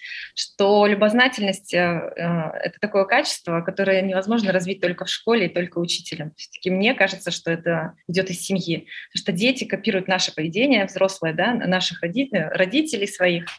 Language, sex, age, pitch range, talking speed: Russian, female, 20-39, 180-225 Hz, 155 wpm